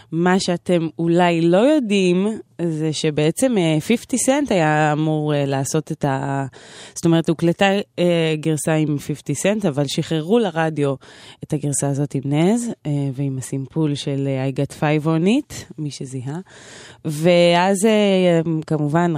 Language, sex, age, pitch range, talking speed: Hebrew, female, 20-39, 140-175 Hz, 120 wpm